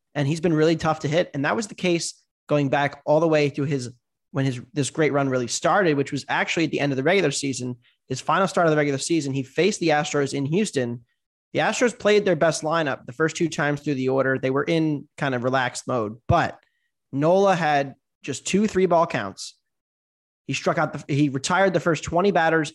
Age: 20-39